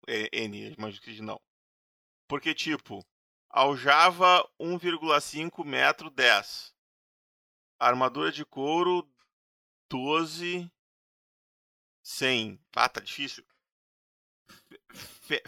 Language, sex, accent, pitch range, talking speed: Portuguese, male, Brazilian, 125-155 Hz, 70 wpm